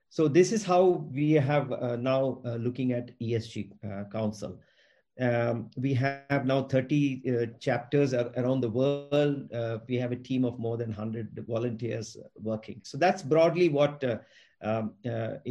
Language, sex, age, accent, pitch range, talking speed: English, male, 50-69, Indian, 120-150 Hz, 165 wpm